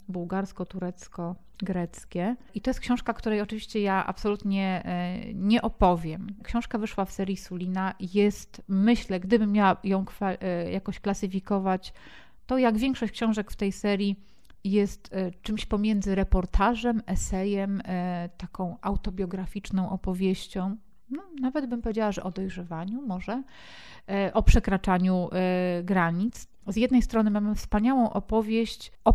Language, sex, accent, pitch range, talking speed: Polish, female, native, 185-220 Hz, 115 wpm